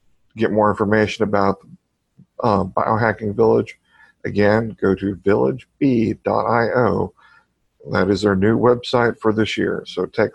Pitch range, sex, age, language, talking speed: 100-125 Hz, male, 50-69, English, 120 wpm